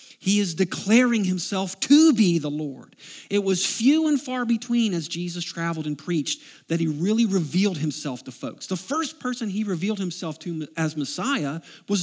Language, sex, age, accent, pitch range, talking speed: English, male, 40-59, American, 170-225 Hz, 180 wpm